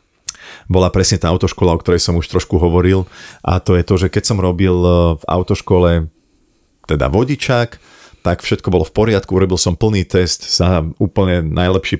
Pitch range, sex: 85-95 Hz, male